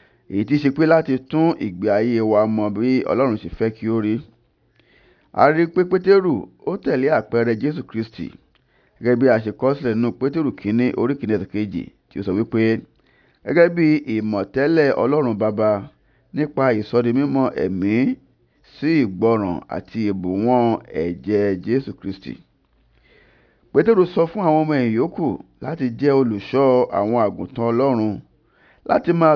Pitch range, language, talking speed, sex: 105-135 Hz, English, 140 wpm, male